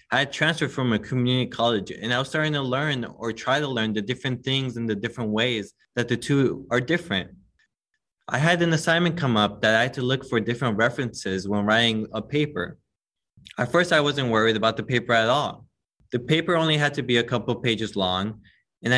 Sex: male